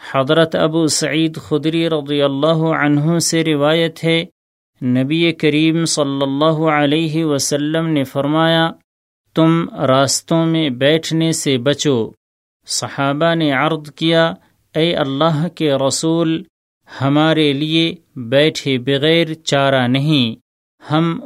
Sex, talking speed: male, 110 wpm